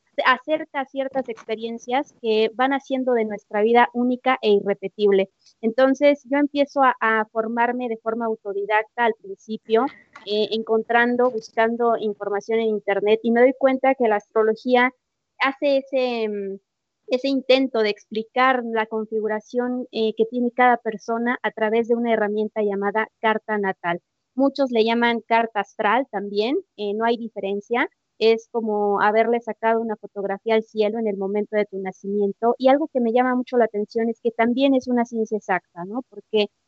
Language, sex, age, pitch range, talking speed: Spanish, female, 20-39, 215-250 Hz, 160 wpm